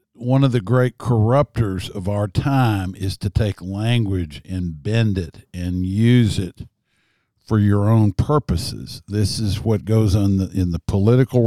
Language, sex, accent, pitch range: English, male, American, 90-120 Hz